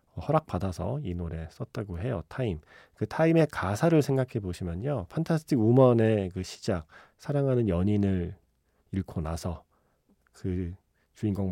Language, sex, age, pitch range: Korean, male, 40-59, 90-130 Hz